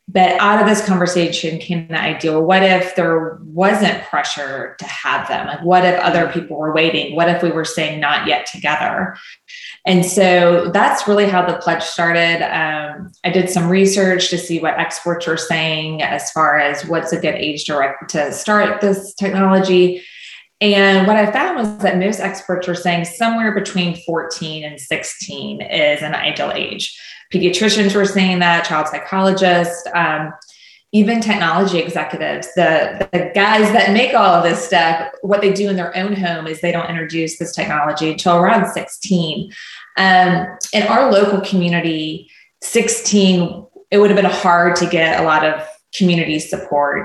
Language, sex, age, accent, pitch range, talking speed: English, female, 20-39, American, 165-195 Hz, 170 wpm